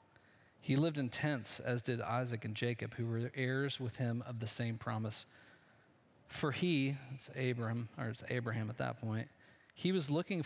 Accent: American